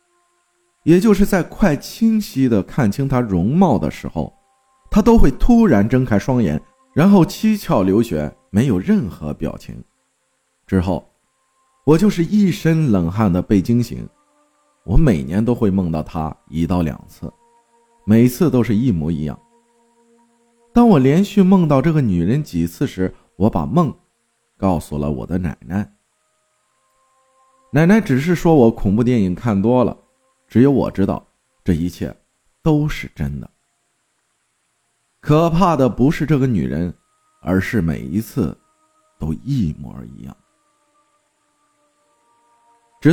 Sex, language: male, Chinese